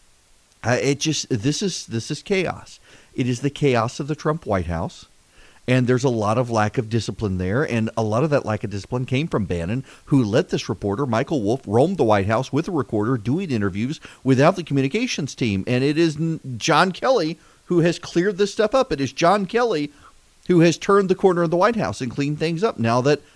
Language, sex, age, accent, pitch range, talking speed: English, male, 40-59, American, 120-165 Hz, 220 wpm